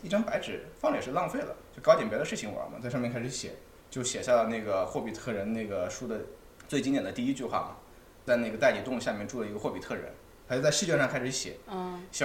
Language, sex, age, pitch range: Chinese, male, 20-39, 120-185 Hz